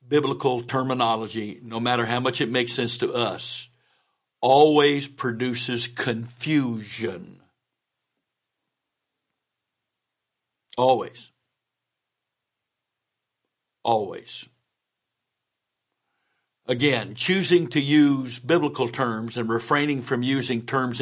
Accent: American